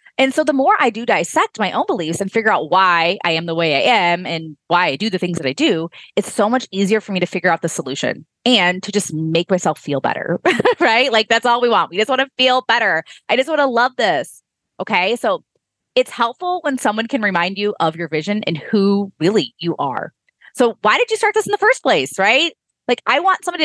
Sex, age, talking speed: female, 20-39, 245 wpm